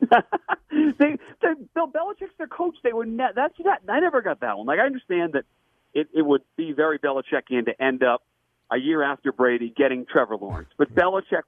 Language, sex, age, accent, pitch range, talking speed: English, male, 40-59, American, 125-185 Hz, 195 wpm